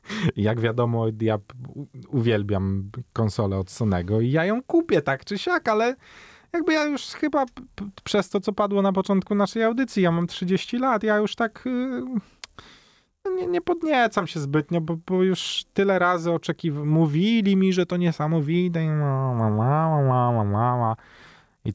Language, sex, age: Polish, male, 20-39